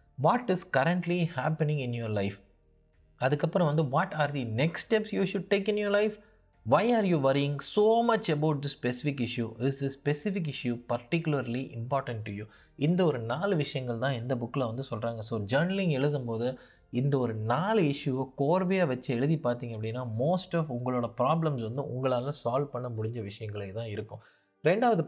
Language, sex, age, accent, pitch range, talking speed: Tamil, male, 20-39, native, 120-155 Hz, 170 wpm